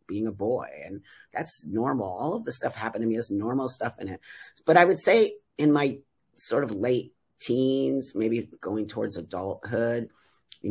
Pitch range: 105-130 Hz